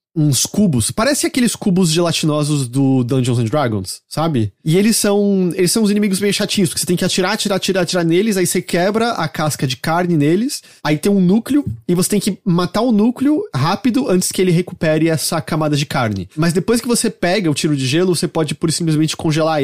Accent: Brazilian